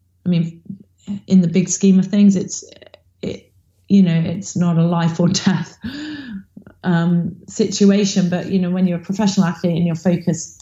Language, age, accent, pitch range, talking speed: English, 30-49, British, 170-200 Hz, 175 wpm